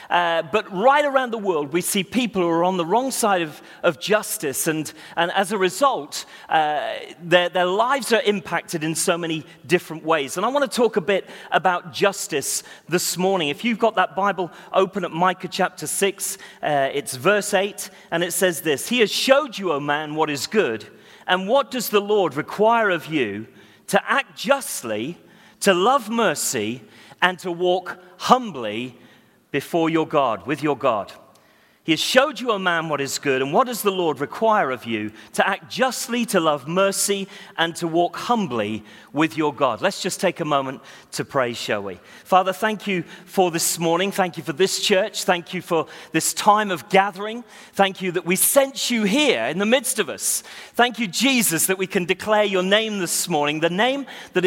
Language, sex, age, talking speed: English, male, 40-59, 195 wpm